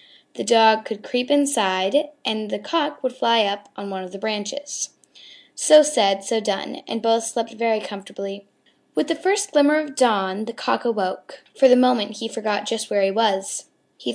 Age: 10-29